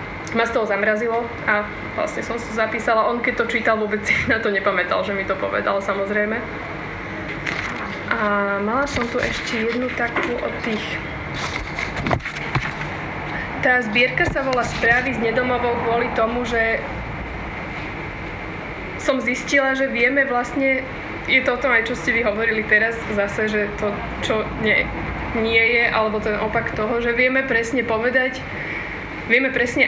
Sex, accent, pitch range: female, native, 210-235 Hz